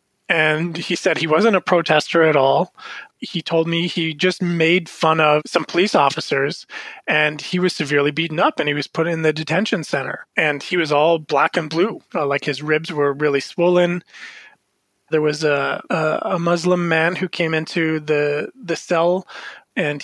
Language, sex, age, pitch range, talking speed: English, male, 30-49, 150-175 Hz, 180 wpm